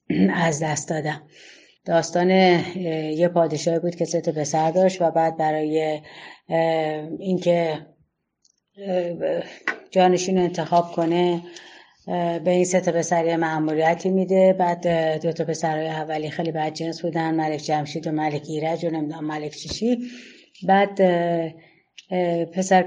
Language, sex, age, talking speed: Persian, female, 30-49, 115 wpm